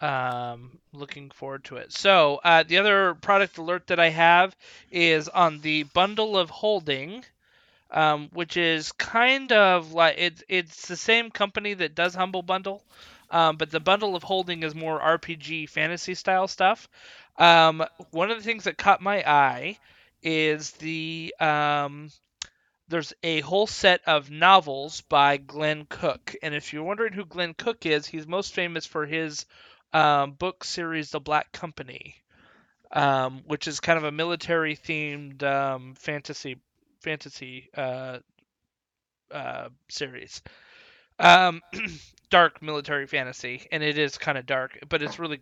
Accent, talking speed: American, 150 wpm